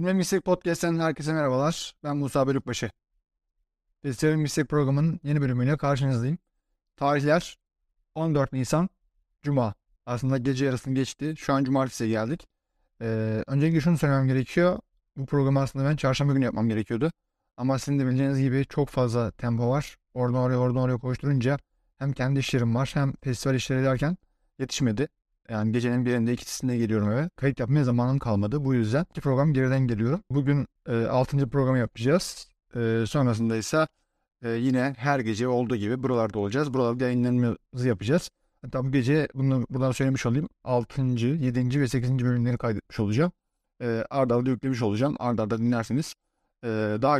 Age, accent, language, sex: 30-49, native, Turkish, male